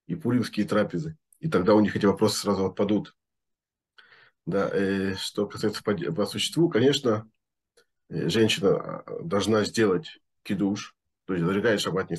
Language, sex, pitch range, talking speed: Russian, male, 100-135 Hz, 130 wpm